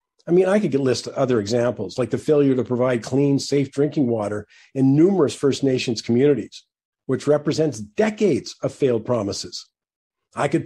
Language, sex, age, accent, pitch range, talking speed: English, male, 50-69, American, 130-170 Hz, 165 wpm